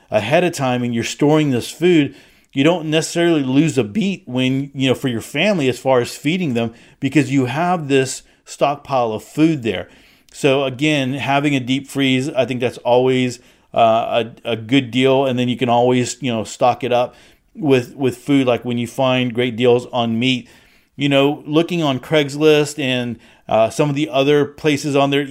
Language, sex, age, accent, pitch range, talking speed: English, male, 40-59, American, 125-140 Hz, 195 wpm